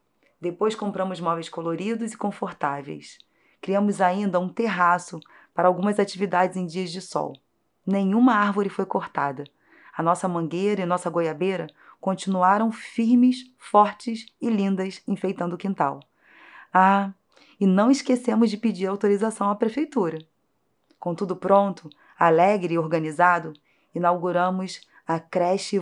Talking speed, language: 125 wpm, Portuguese